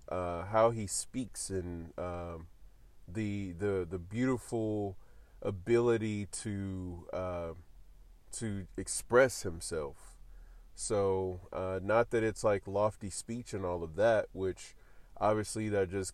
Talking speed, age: 120 wpm, 30-49